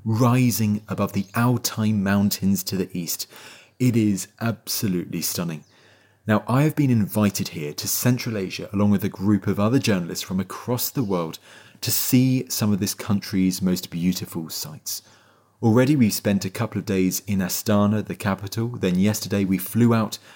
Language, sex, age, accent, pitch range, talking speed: English, male, 30-49, British, 100-120 Hz, 170 wpm